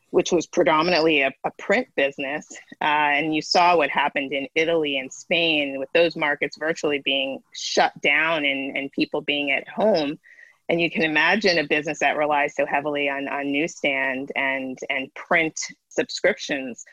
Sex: female